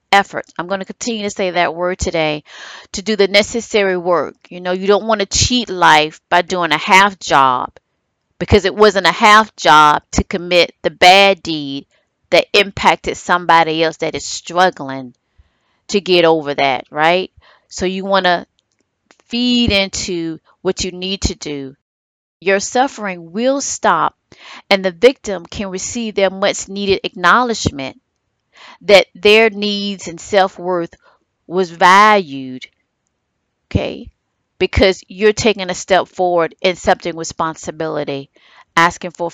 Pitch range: 165-205 Hz